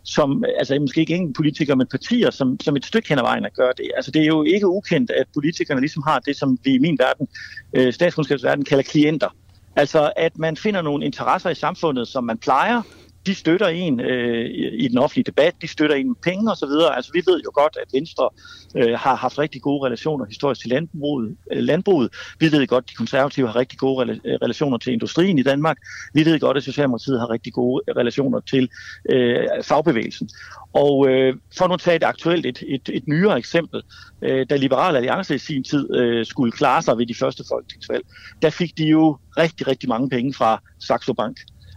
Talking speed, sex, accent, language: 215 wpm, male, native, Danish